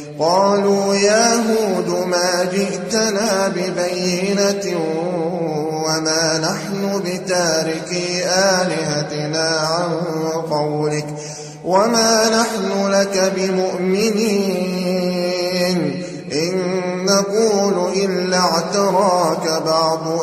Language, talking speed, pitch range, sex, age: Arabic, 60 wpm, 160-190 Hz, male, 30-49